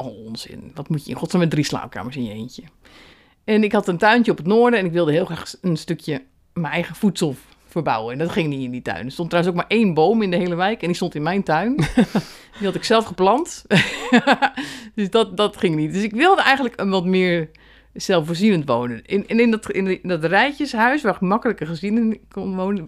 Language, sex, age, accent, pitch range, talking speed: Dutch, female, 50-69, Dutch, 155-220 Hz, 235 wpm